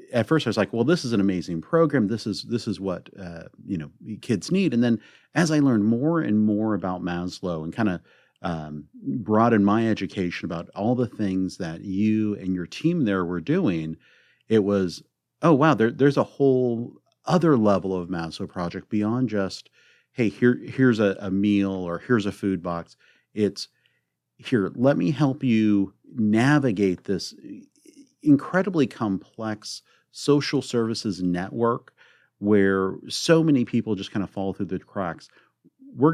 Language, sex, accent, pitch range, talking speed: English, male, American, 95-125 Hz, 165 wpm